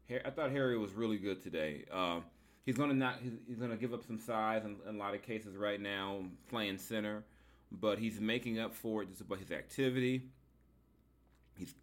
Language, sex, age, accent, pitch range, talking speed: English, male, 30-49, American, 95-115 Hz, 205 wpm